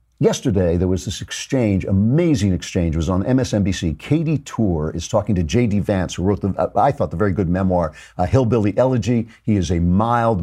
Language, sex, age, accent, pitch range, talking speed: English, male, 50-69, American, 95-125 Hz, 195 wpm